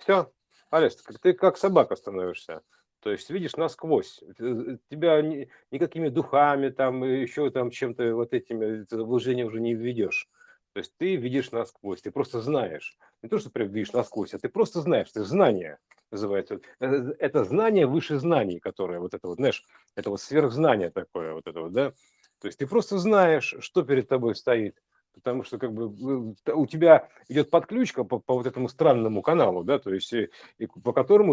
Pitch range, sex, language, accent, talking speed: 125-170 Hz, male, Russian, native, 175 wpm